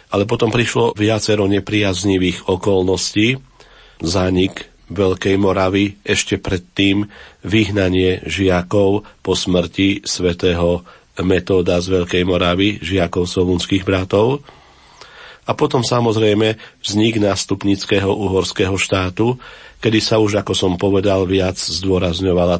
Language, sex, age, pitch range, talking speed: Slovak, male, 40-59, 90-100 Hz, 100 wpm